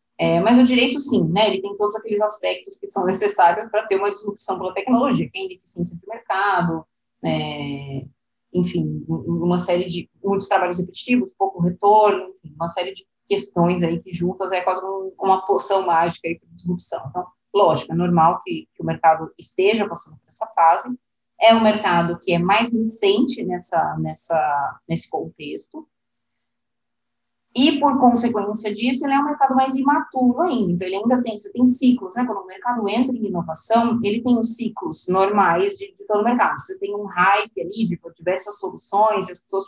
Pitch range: 175-230 Hz